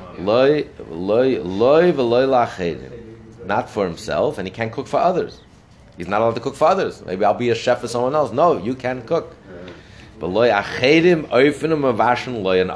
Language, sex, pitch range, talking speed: English, male, 110-150 Hz, 135 wpm